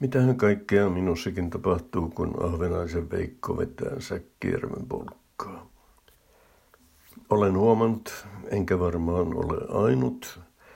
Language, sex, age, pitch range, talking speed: Finnish, male, 60-79, 90-105 Hz, 90 wpm